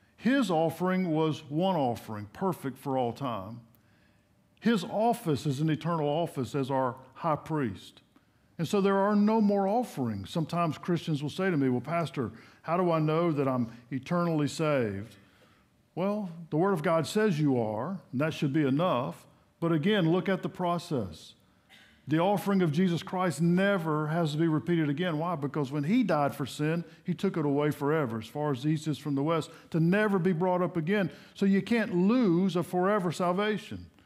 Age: 50-69